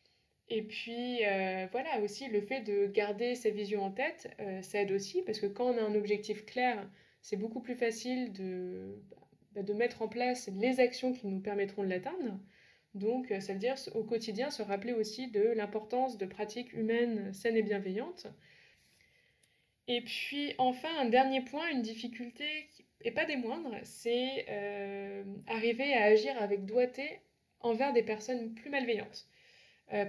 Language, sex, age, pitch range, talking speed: French, female, 20-39, 200-240 Hz, 165 wpm